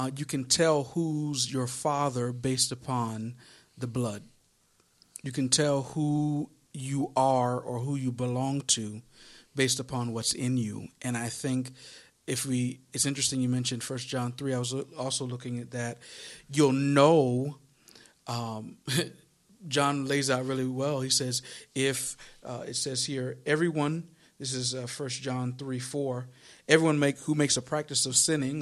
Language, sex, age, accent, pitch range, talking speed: English, male, 50-69, American, 125-150 Hz, 155 wpm